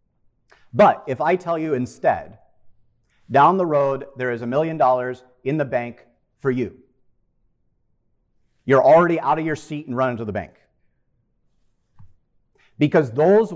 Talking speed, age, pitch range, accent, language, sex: 140 wpm, 40-59, 115-170 Hz, American, English, male